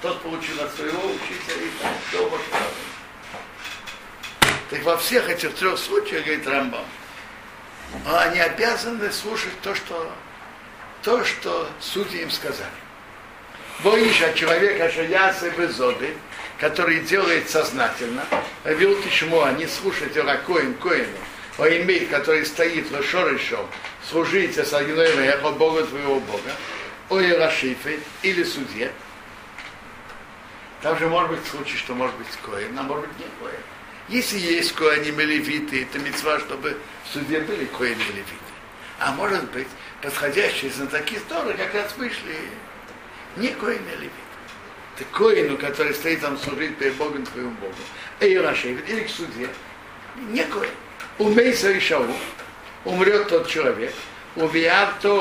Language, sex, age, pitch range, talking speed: Russian, male, 60-79, 150-220 Hz, 125 wpm